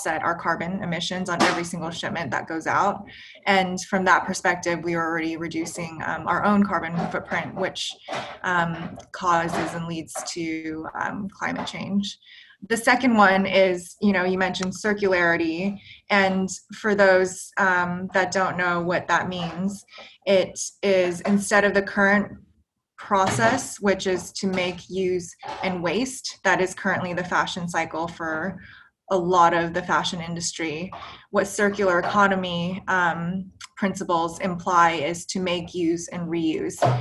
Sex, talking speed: female, 145 wpm